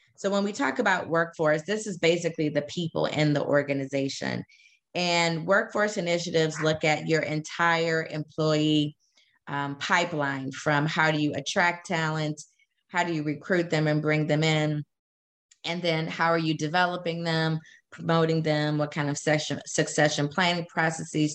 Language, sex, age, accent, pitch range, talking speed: English, female, 30-49, American, 145-170 Hz, 150 wpm